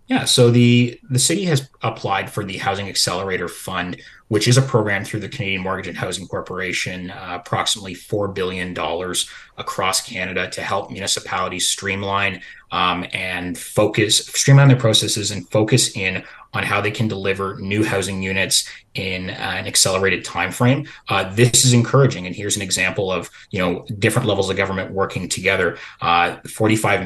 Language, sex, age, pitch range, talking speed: English, male, 30-49, 95-115 Hz, 165 wpm